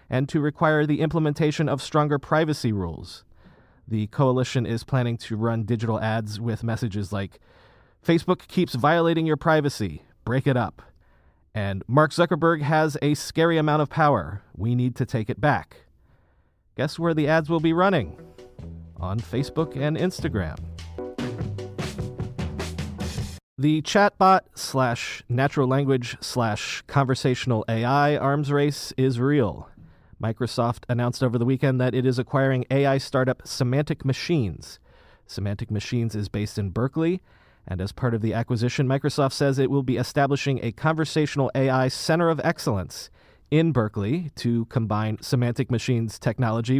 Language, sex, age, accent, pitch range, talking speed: English, male, 30-49, American, 115-150 Hz, 140 wpm